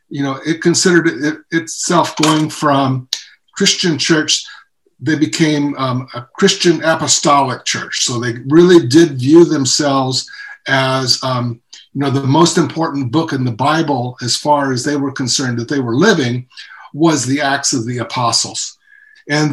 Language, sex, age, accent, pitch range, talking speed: English, male, 60-79, American, 135-170 Hz, 155 wpm